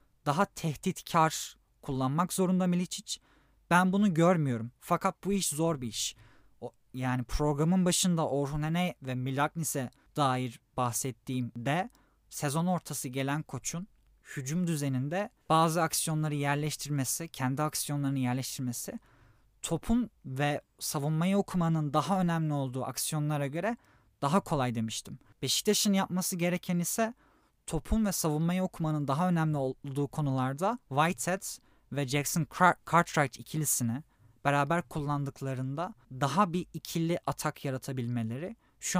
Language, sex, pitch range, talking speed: Turkish, male, 130-175 Hz, 110 wpm